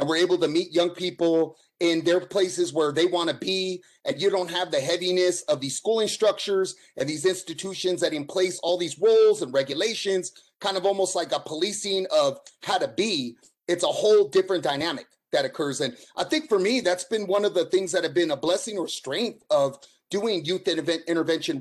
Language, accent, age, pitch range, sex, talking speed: English, American, 30-49, 165-245 Hz, male, 210 wpm